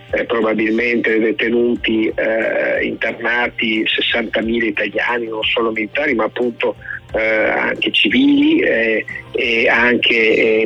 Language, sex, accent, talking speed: Italian, male, native, 105 wpm